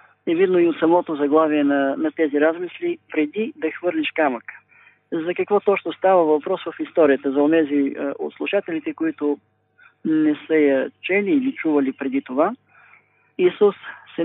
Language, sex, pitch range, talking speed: Bulgarian, male, 155-195 Hz, 150 wpm